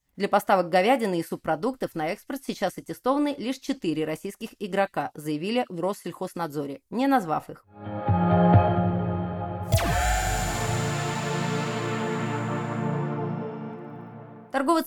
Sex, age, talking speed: female, 30-49, 80 wpm